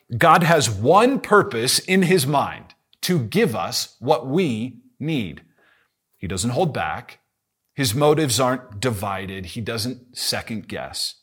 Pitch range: 105-150 Hz